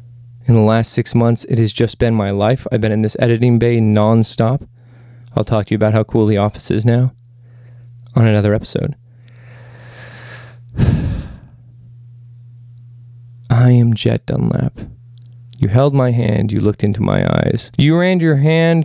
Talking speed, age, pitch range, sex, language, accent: 155 wpm, 20-39, 120-150 Hz, male, English, American